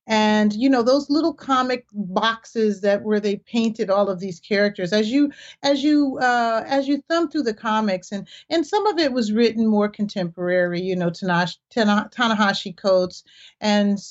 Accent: American